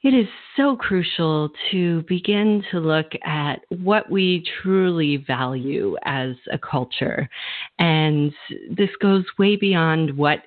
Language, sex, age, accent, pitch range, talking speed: English, female, 40-59, American, 140-180 Hz, 125 wpm